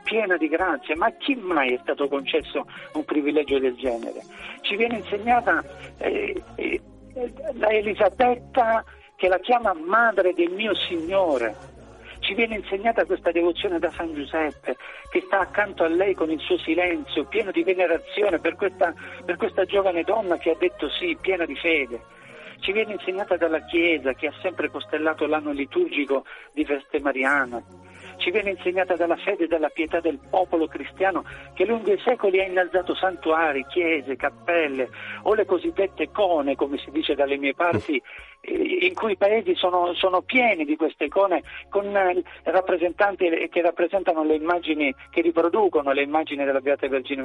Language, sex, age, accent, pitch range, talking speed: Italian, male, 50-69, native, 155-215 Hz, 160 wpm